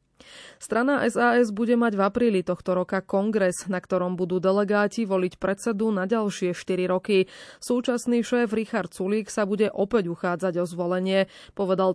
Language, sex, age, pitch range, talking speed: Slovak, female, 20-39, 180-215 Hz, 150 wpm